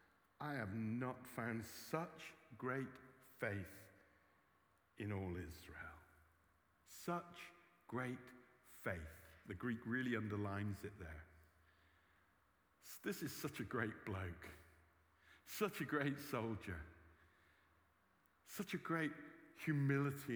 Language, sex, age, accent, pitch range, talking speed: English, male, 60-79, British, 95-135 Hz, 95 wpm